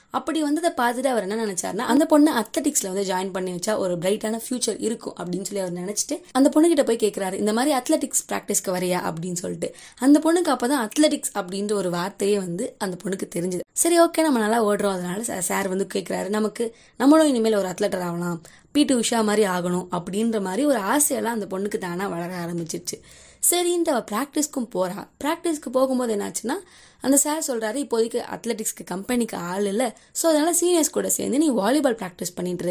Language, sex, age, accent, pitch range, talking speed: Tamil, female, 20-39, native, 190-275 Hz, 170 wpm